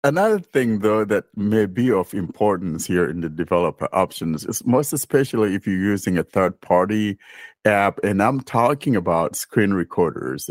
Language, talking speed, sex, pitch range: English, 165 wpm, male, 90-110 Hz